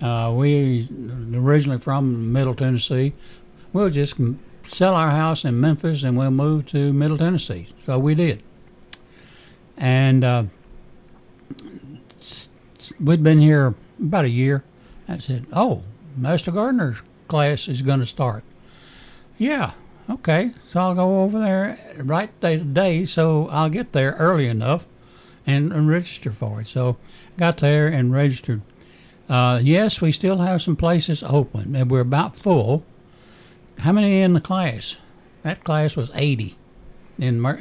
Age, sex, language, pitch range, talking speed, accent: 60-79, male, English, 125-160 Hz, 140 wpm, American